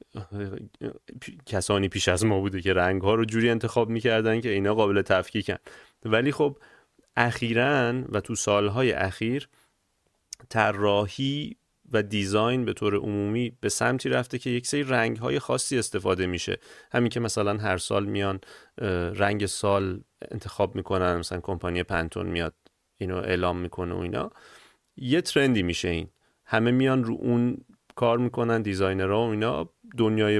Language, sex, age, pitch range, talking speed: Persian, male, 30-49, 95-120 Hz, 155 wpm